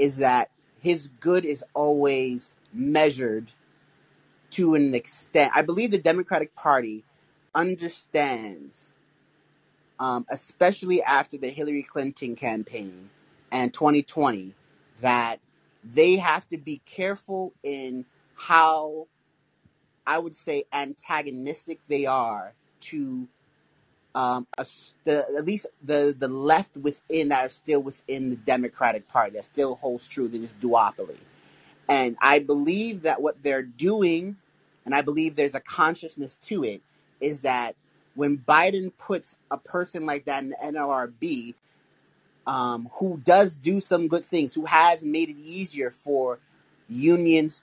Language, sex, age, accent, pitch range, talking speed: English, male, 30-49, American, 135-170 Hz, 130 wpm